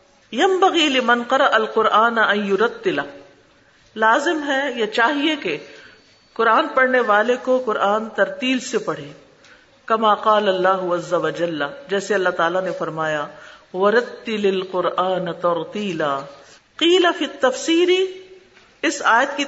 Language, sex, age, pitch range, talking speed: Urdu, female, 50-69, 200-285 Hz, 100 wpm